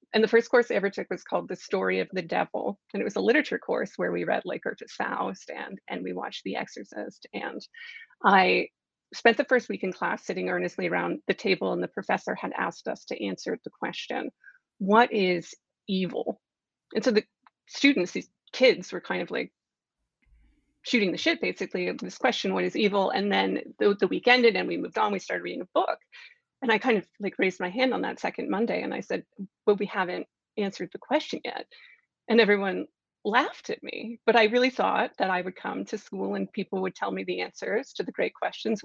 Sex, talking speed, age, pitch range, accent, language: female, 220 wpm, 30-49, 185-255 Hz, American, English